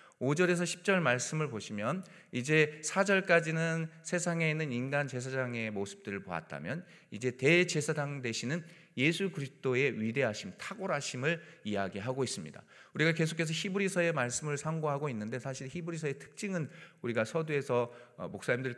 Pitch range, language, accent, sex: 115-170 Hz, Korean, native, male